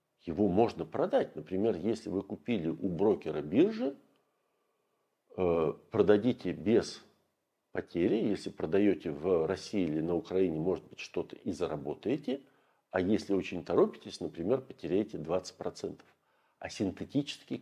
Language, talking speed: Russian, 115 wpm